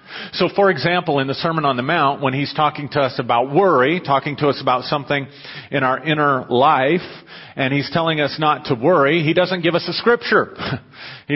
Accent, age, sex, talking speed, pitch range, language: American, 40-59, male, 205 wpm, 130-155 Hz, English